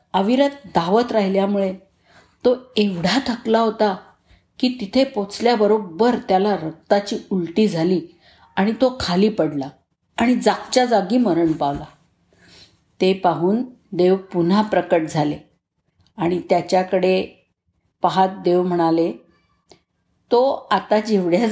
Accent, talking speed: native, 105 wpm